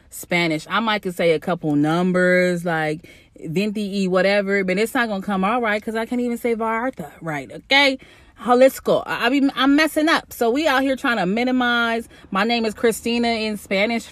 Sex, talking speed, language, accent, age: female, 190 wpm, English, American, 30-49